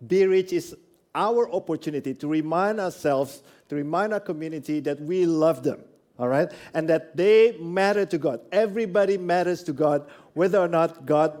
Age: 50-69